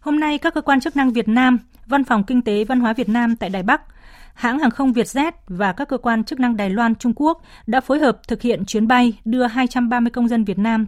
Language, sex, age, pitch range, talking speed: Vietnamese, female, 20-39, 200-250 Hz, 255 wpm